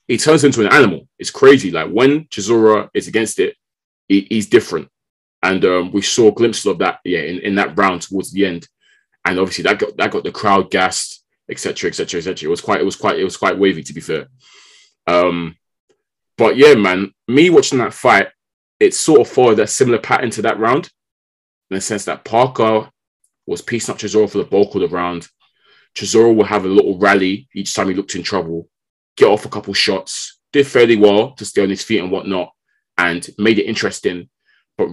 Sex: male